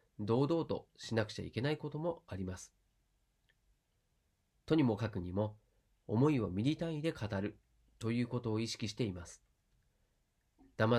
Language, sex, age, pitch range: Japanese, male, 40-59, 95-140 Hz